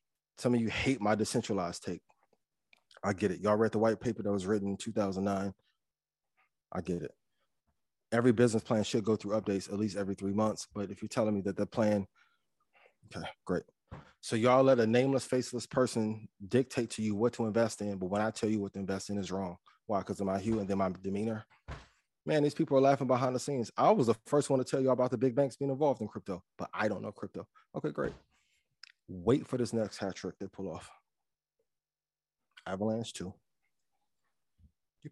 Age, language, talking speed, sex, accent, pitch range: 20-39, English, 210 wpm, male, American, 100-125 Hz